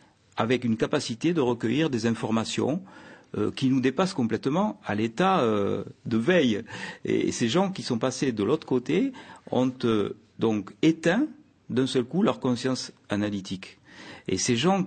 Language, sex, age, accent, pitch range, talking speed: French, male, 50-69, French, 110-165 Hz, 155 wpm